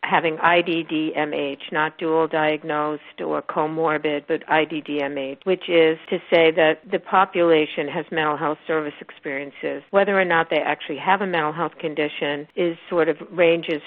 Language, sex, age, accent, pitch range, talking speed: English, female, 50-69, American, 155-175 Hz, 150 wpm